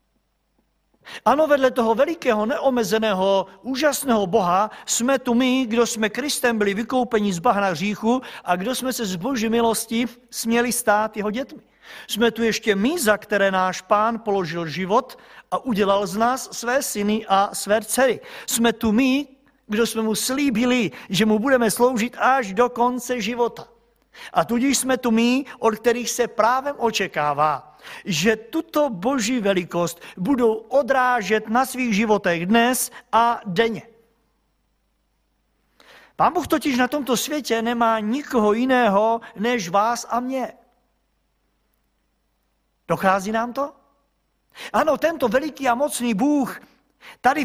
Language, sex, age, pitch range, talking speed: Czech, male, 50-69, 215-260 Hz, 135 wpm